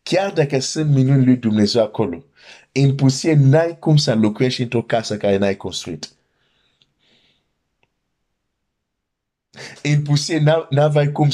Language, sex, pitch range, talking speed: Romanian, male, 105-145 Hz, 115 wpm